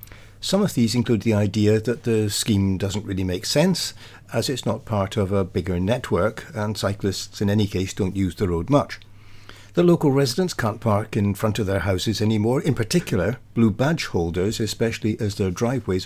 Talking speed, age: 190 wpm, 60-79